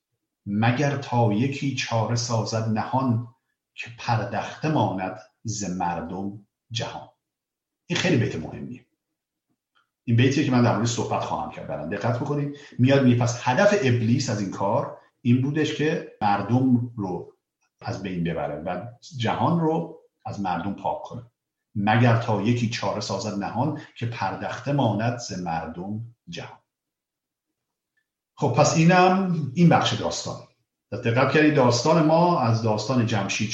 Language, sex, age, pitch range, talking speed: Persian, male, 50-69, 105-145 Hz, 135 wpm